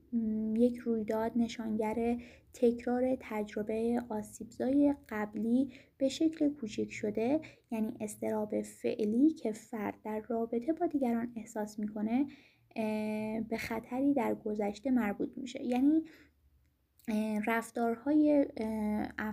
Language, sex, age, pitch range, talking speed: Persian, female, 20-39, 220-265 Hz, 95 wpm